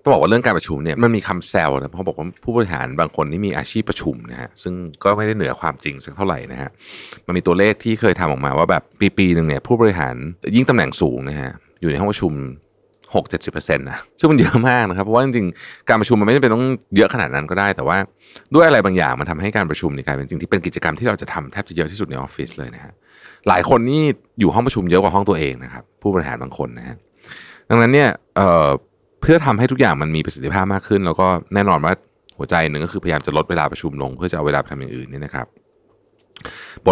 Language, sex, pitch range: Thai, male, 75-105 Hz